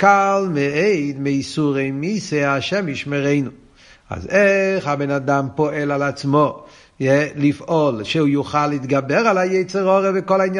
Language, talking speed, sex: Hebrew, 120 wpm, male